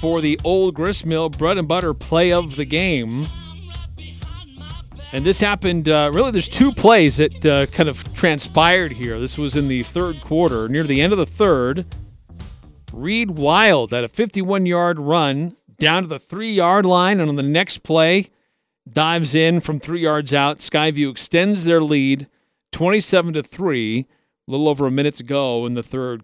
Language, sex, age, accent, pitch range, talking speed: English, male, 40-59, American, 130-175 Hz, 165 wpm